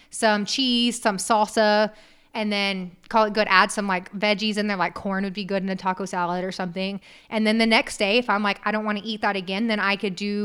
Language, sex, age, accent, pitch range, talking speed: English, female, 20-39, American, 195-220 Hz, 260 wpm